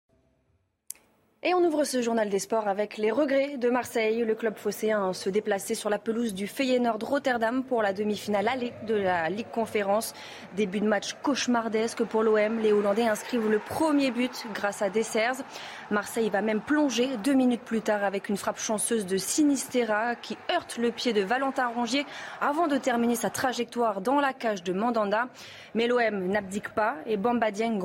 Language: French